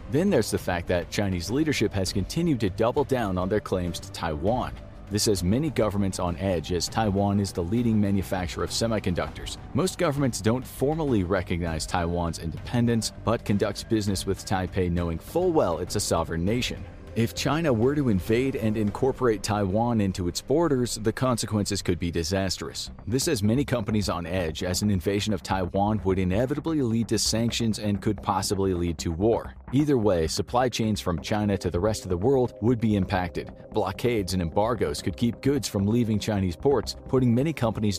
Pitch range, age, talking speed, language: 90-115 Hz, 40-59, 185 wpm, English